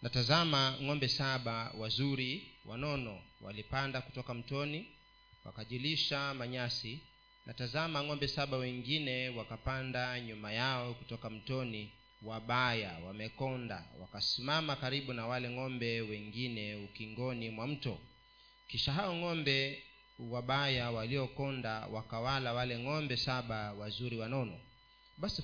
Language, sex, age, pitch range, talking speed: Swahili, male, 40-59, 115-140 Hz, 100 wpm